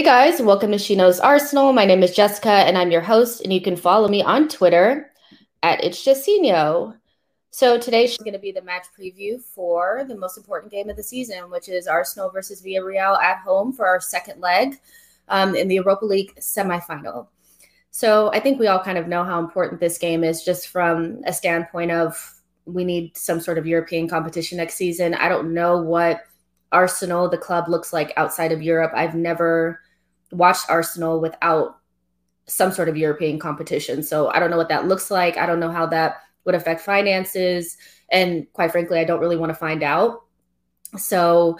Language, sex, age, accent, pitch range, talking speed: English, female, 20-39, American, 165-190 Hz, 195 wpm